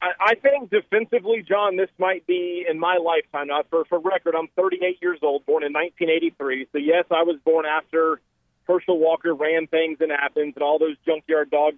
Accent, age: American, 40-59